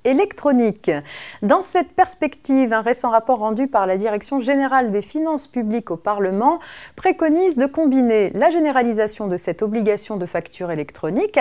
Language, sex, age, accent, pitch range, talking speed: French, female, 40-59, French, 185-300 Hz, 145 wpm